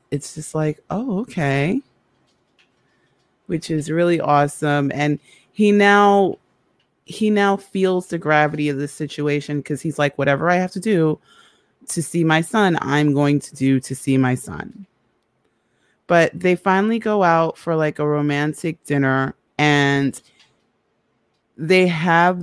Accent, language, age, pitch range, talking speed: American, English, 30-49, 150-185 Hz, 140 wpm